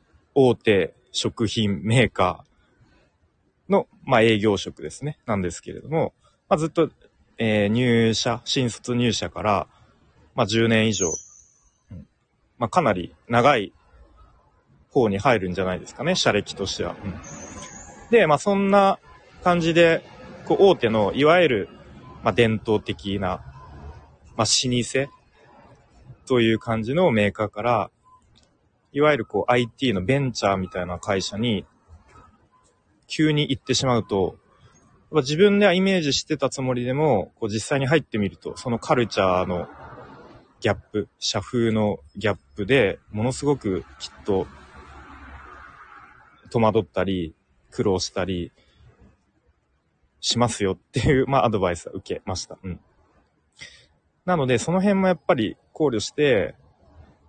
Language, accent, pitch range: Japanese, native, 90-130 Hz